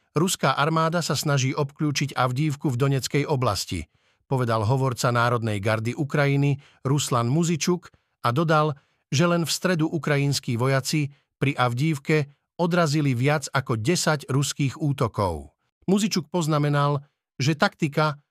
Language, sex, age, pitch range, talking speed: Slovak, male, 50-69, 130-160 Hz, 120 wpm